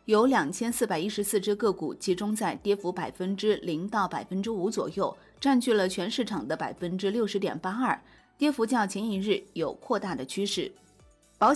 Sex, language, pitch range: female, Chinese, 195-260 Hz